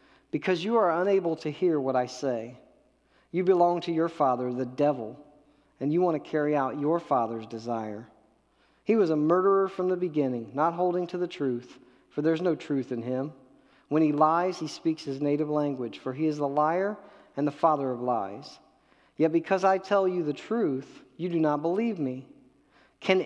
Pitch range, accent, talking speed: 125-175 Hz, American, 190 wpm